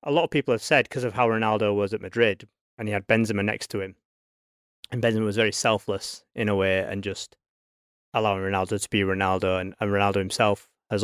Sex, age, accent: male, 20-39, British